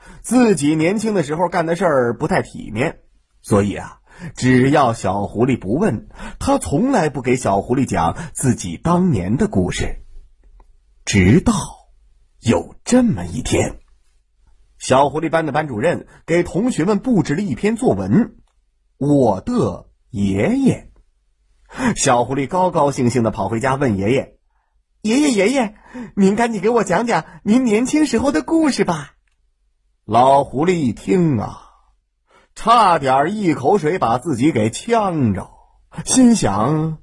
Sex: male